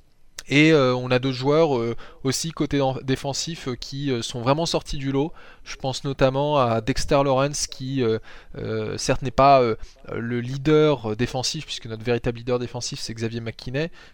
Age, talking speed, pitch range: 20-39, 180 wpm, 115-140 Hz